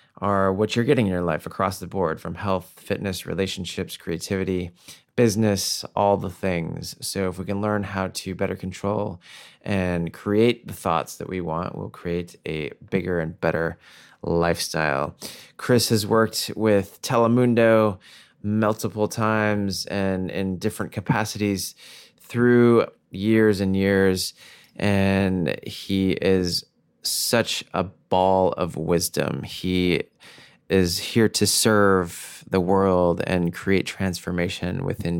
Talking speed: 130 wpm